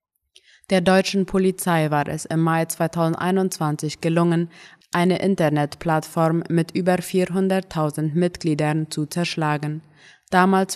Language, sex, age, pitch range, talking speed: German, female, 20-39, 155-175 Hz, 100 wpm